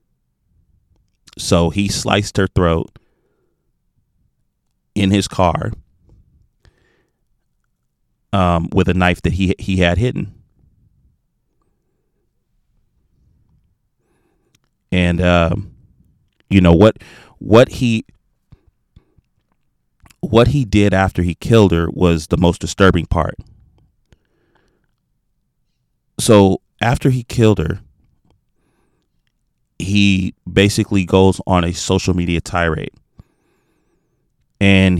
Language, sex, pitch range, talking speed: English, male, 90-105 Hz, 85 wpm